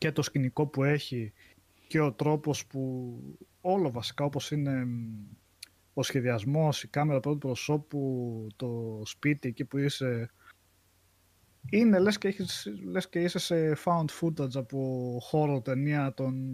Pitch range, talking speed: 110-145 Hz, 140 wpm